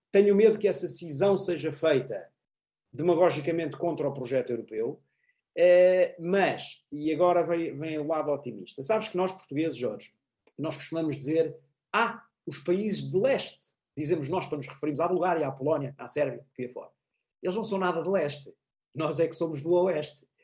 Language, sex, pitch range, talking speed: Portuguese, male, 145-190 Hz, 175 wpm